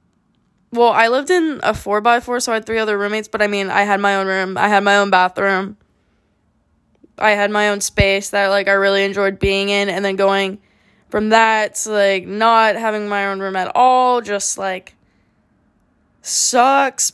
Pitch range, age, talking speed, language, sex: 205-250 Hz, 10-29, 195 wpm, English, female